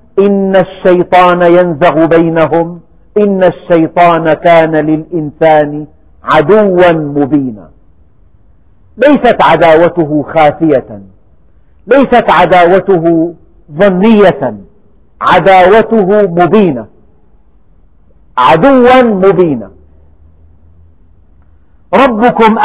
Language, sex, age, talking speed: Arabic, male, 50-69, 55 wpm